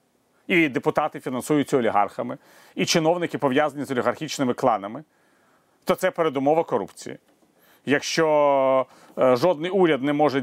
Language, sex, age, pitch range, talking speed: Ukrainian, male, 30-49, 120-150 Hz, 110 wpm